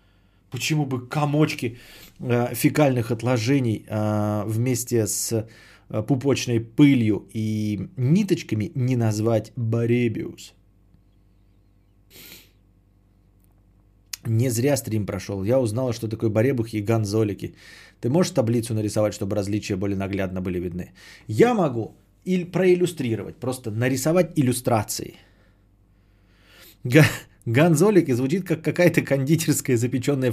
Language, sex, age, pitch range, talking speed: Bulgarian, male, 20-39, 105-135 Hz, 100 wpm